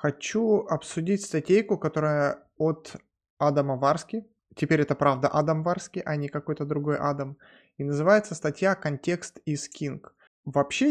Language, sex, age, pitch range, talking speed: Russian, male, 20-39, 150-200 Hz, 130 wpm